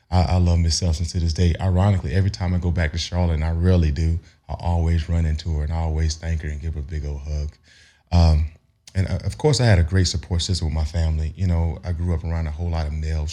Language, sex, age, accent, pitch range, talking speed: English, male, 30-49, American, 80-90 Hz, 270 wpm